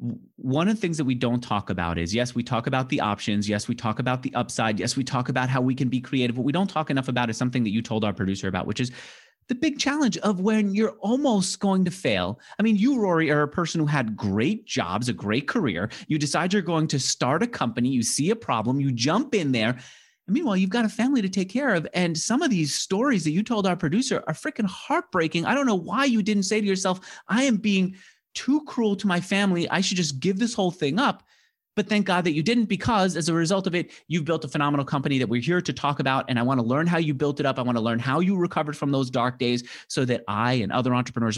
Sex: male